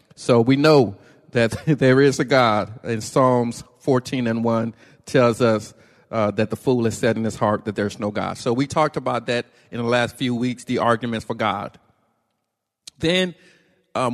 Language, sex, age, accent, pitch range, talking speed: English, male, 50-69, American, 115-130 Hz, 185 wpm